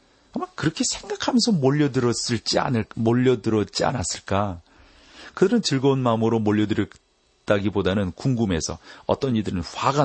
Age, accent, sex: 40-59, native, male